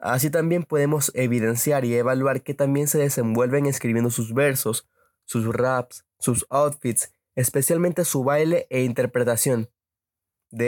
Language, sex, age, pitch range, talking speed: Spanish, male, 20-39, 120-140 Hz, 130 wpm